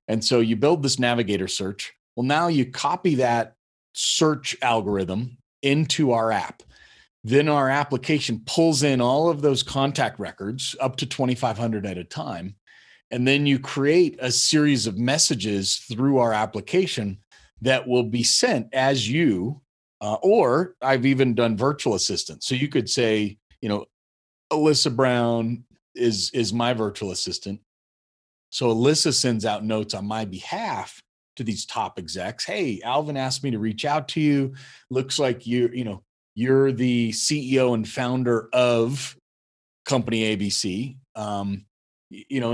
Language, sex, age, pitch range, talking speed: English, male, 40-59, 110-135 Hz, 150 wpm